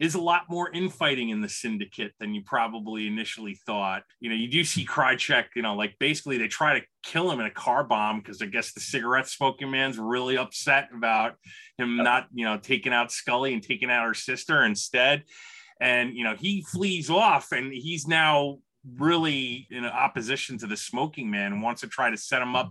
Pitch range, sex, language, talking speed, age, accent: 110-155 Hz, male, English, 210 wpm, 30-49, American